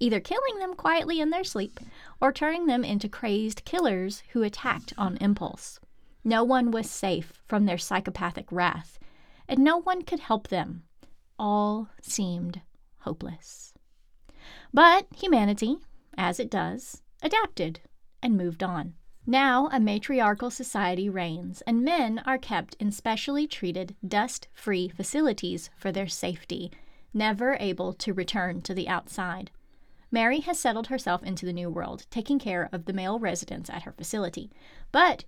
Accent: American